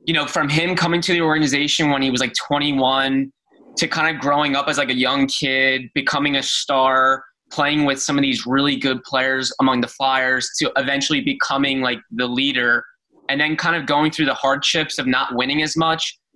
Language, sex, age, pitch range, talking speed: English, male, 20-39, 130-155 Hz, 205 wpm